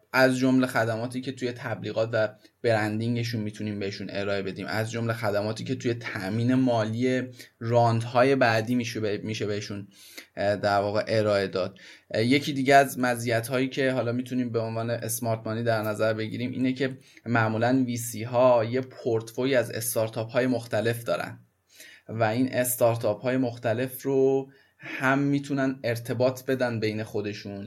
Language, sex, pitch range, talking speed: Persian, male, 110-130 Hz, 145 wpm